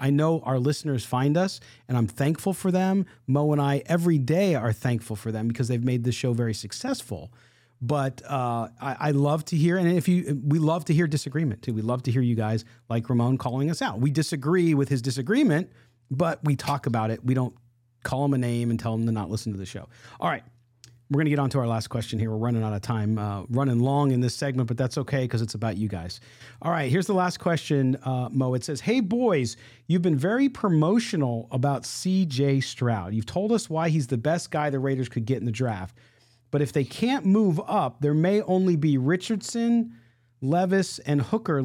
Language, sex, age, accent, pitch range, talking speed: English, male, 40-59, American, 120-160 Hz, 230 wpm